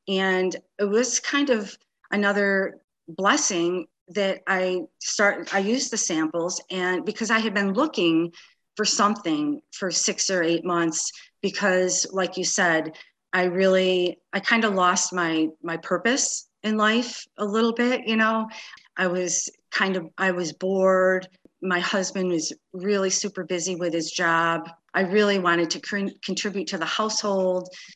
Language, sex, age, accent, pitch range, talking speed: English, female, 40-59, American, 170-205 Hz, 155 wpm